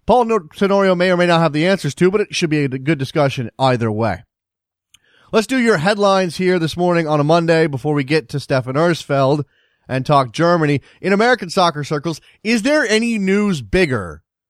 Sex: male